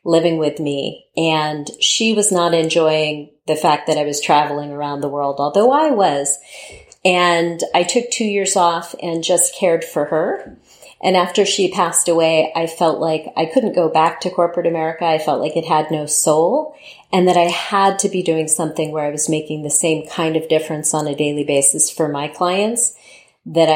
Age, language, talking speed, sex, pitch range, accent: 40-59, English, 195 wpm, female, 150-175 Hz, American